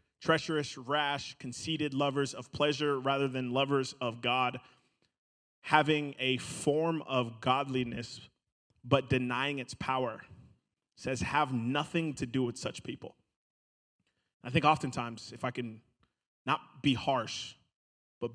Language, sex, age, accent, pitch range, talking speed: English, male, 30-49, American, 125-160 Hz, 125 wpm